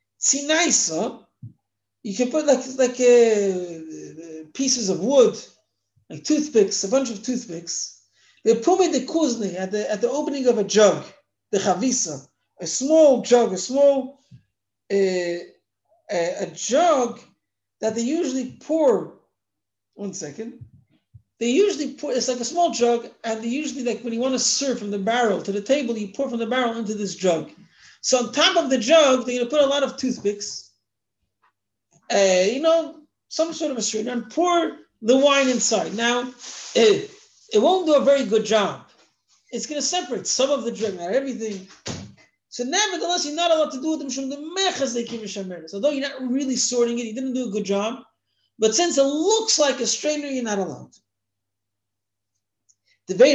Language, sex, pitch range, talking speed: English, male, 200-280 Hz, 170 wpm